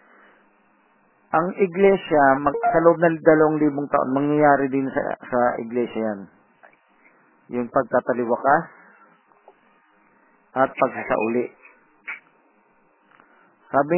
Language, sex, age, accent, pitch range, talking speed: Filipino, male, 40-59, native, 130-160 Hz, 90 wpm